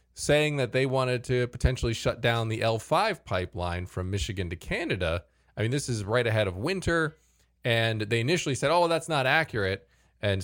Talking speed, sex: 185 wpm, male